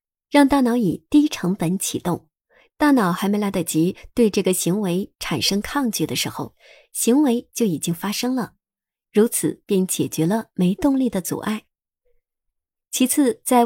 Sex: male